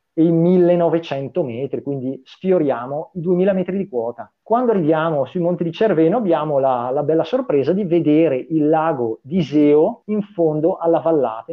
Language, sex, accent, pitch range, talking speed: Italian, male, native, 135-180 Hz, 165 wpm